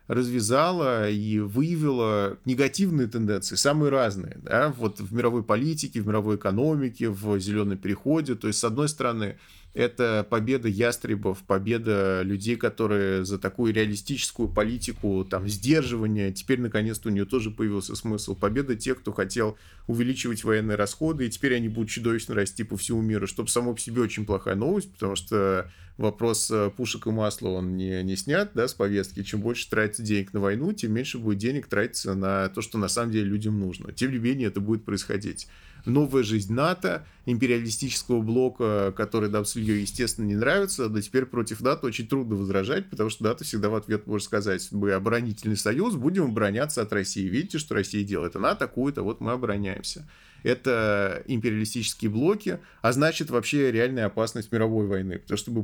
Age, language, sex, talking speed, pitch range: 20-39, Russian, male, 170 wpm, 100-125 Hz